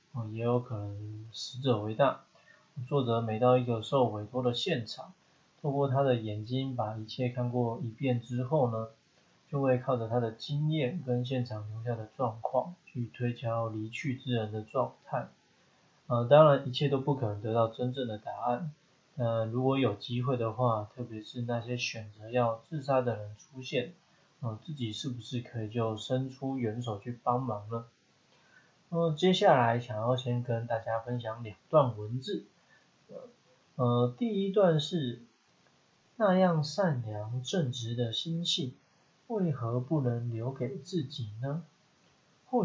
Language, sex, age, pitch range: Chinese, male, 20-39, 115-145 Hz